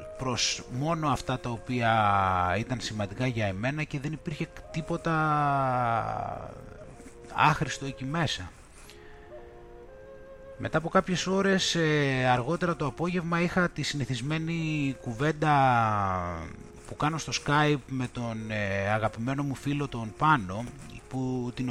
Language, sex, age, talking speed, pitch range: Greek, male, 30-49, 110 wpm, 110-160 Hz